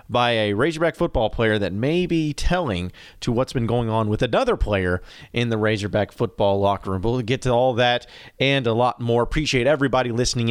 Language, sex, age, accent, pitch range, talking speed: English, male, 30-49, American, 115-150 Hz, 200 wpm